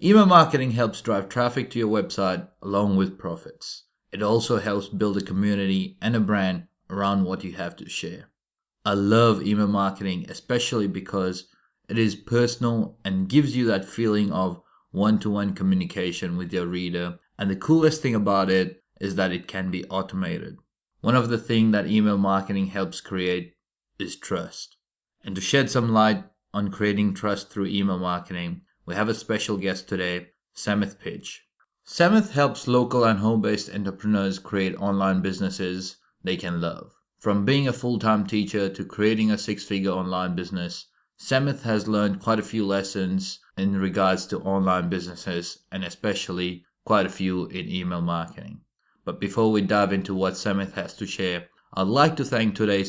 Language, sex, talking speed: English, male, 170 wpm